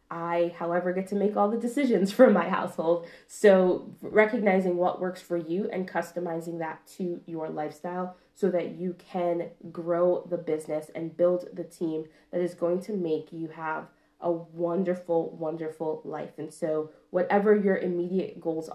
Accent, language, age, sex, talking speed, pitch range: American, English, 20-39, female, 165 wpm, 160-185 Hz